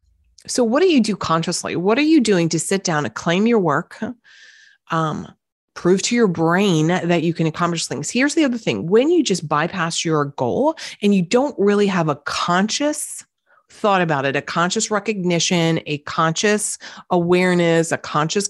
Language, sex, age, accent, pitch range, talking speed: English, female, 30-49, American, 160-225 Hz, 180 wpm